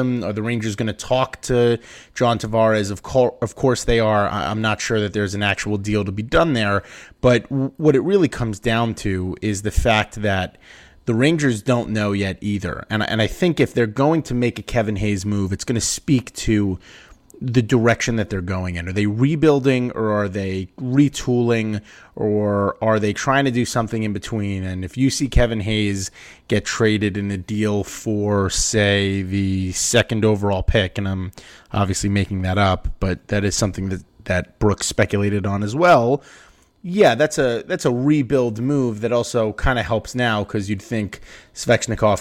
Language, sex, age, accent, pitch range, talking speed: English, male, 30-49, American, 100-120 Hz, 190 wpm